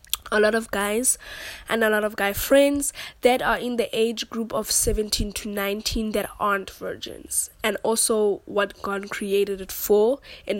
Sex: female